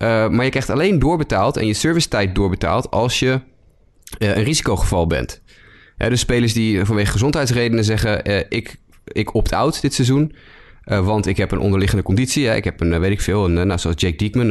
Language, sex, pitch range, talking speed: Dutch, male, 95-120 Hz, 210 wpm